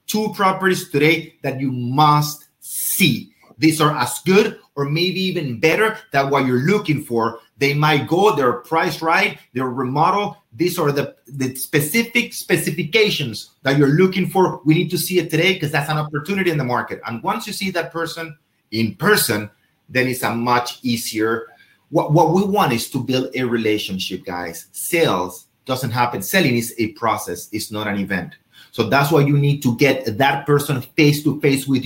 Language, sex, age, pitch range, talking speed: English, male, 30-49, 120-165 Hz, 180 wpm